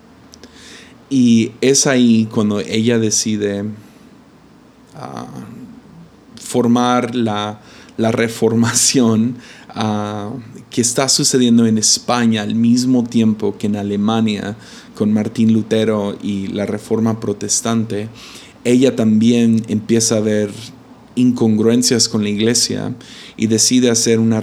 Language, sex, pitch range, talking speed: Spanish, male, 105-120 Hz, 100 wpm